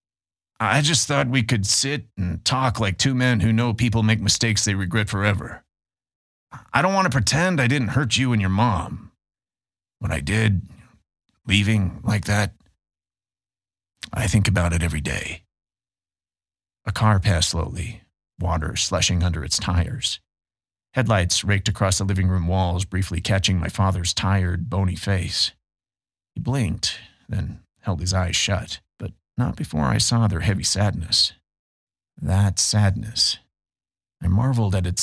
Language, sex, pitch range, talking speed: English, male, 85-110 Hz, 145 wpm